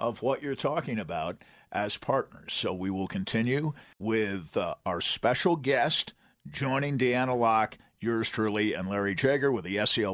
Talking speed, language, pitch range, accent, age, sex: 160 wpm, English, 120-165 Hz, American, 50-69, male